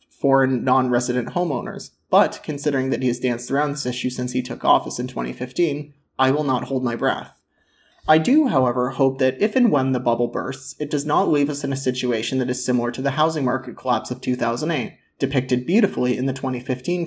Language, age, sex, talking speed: English, 30-49, male, 205 wpm